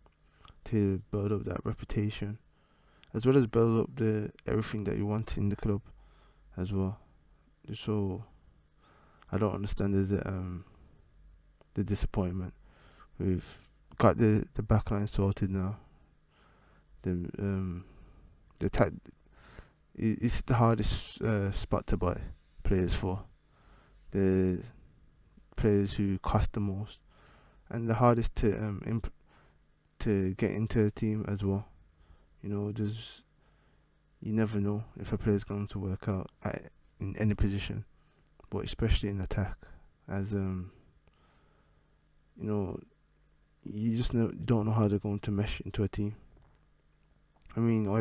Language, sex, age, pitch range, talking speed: English, male, 20-39, 95-105 Hz, 135 wpm